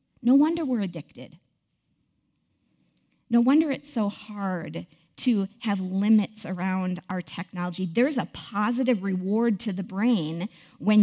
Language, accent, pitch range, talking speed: English, American, 185-230 Hz, 125 wpm